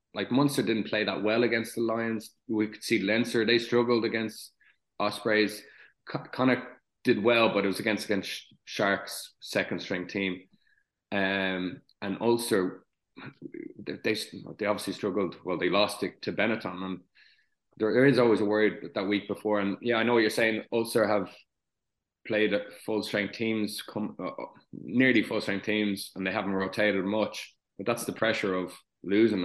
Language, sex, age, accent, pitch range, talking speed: English, male, 20-39, Irish, 95-110 Hz, 165 wpm